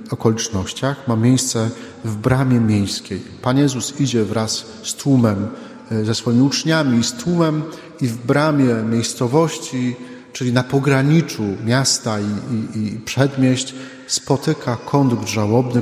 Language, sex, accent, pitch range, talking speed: Polish, male, native, 115-140 Hz, 120 wpm